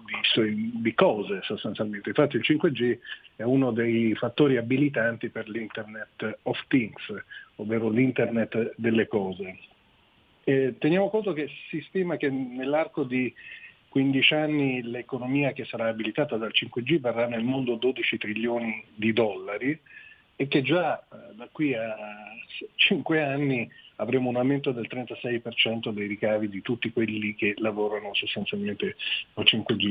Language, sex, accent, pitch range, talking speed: Italian, male, native, 110-140 Hz, 130 wpm